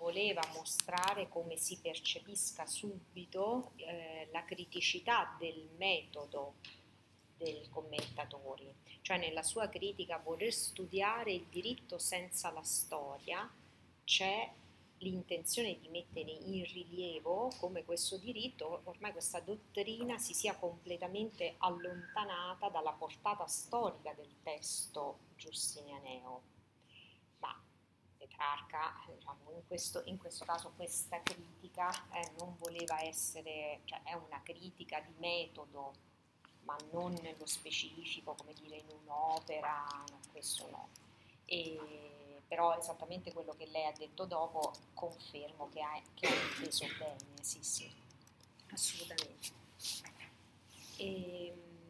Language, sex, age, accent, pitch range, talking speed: Italian, female, 40-59, native, 150-180 Hz, 110 wpm